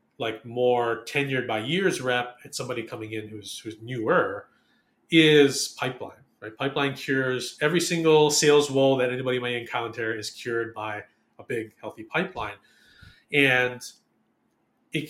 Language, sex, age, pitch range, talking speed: English, male, 30-49, 120-150 Hz, 140 wpm